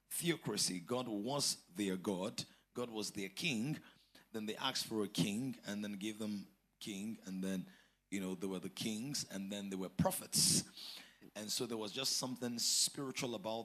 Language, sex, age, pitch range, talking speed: English, male, 30-49, 105-130 Hz, 180 wpm